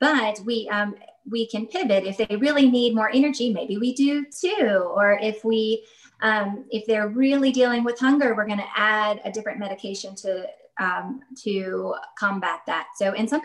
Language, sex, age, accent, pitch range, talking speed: English, female, 20-39, American, 205-250 Hz, 180 wpm